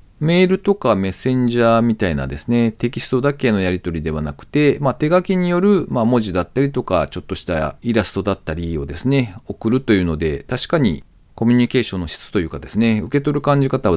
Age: 40-59